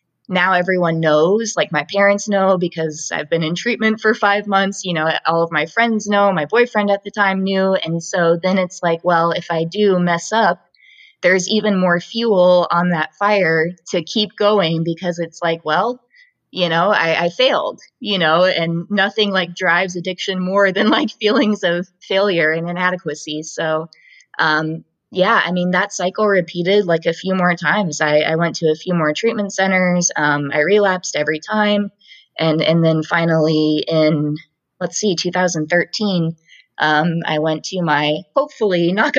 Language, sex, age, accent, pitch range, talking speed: English, female, 20-39, American, 160-200 Hz, 175 wpm